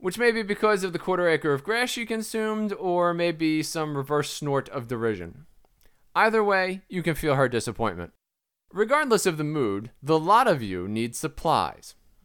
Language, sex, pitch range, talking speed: English, male, 125-175 Hz, 175 wpm